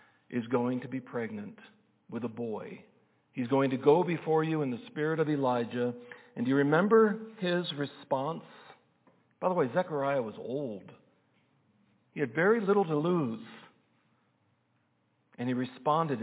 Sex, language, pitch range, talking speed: male, English, 125-160 Hz, 150 wpm